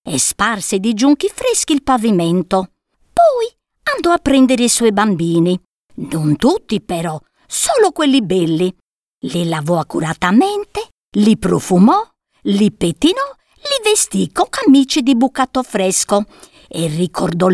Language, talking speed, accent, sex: Italian, 125 wpm, native, female